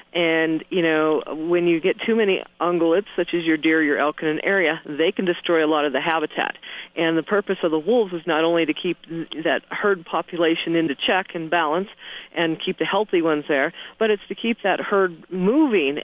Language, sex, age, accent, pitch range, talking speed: English, female, 40-59, American, 160-185 Hz, 215 wpm